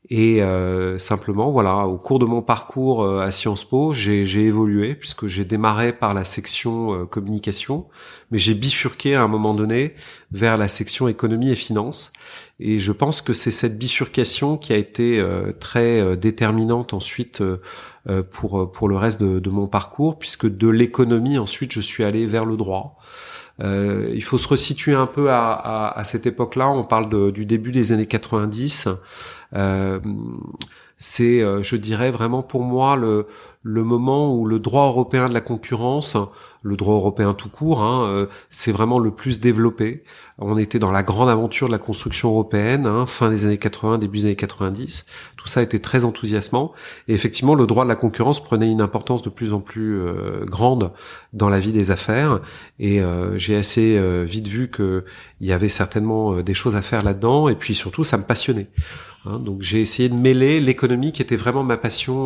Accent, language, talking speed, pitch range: French, French, 190 wpm, 105-125 Hz